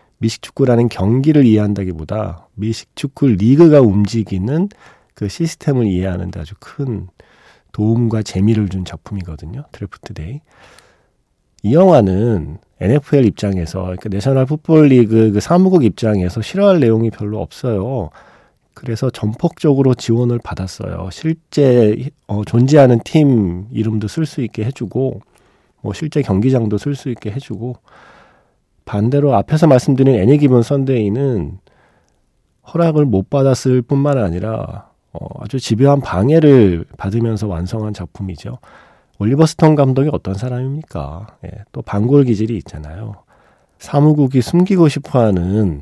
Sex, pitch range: male, 105-140 Hz